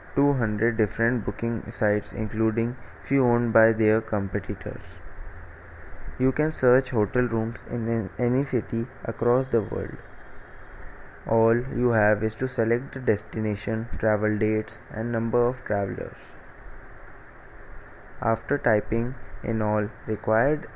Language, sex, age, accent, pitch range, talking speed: English, male, 20-39, Indian, 105-120 Hz, 115 wpm